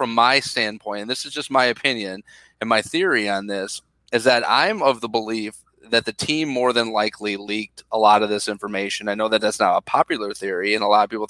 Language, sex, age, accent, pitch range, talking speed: English, male, 30-49, American, 105-130 Hz, 240 wpm